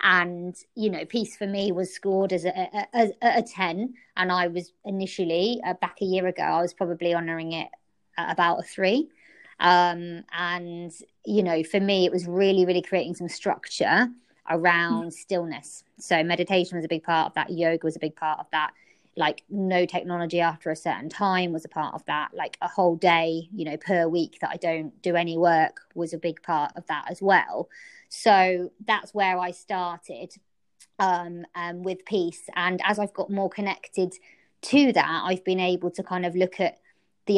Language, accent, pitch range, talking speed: English, British, 175-200 Hz, 195 wpm